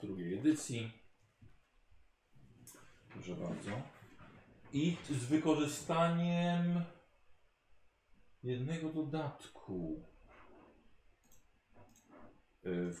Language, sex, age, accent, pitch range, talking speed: Polish, male, 40-59, native, 95-125 Hz, 45 wpm